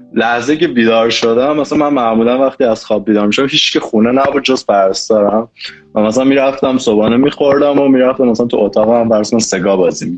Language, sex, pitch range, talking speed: Persian, male, 105-130 Hz, 205 wpm